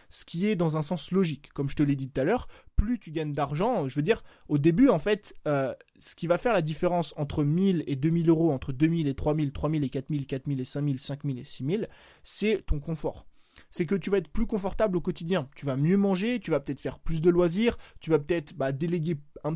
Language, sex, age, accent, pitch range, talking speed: French, male, 20-39, French, 145-190 Hz, 250 wpm